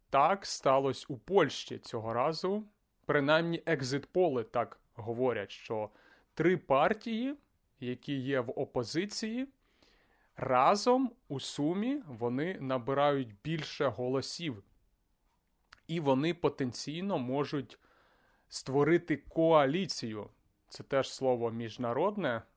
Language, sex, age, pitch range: Ukrainian, male, 30-49, 120-165 Hz